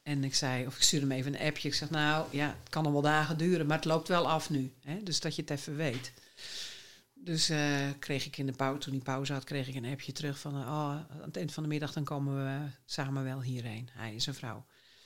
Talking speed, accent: 270 wpm, Dutch